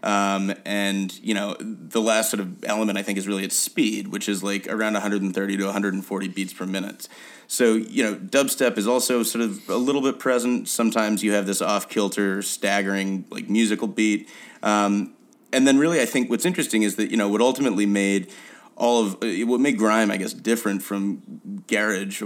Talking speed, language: 190 wpm, English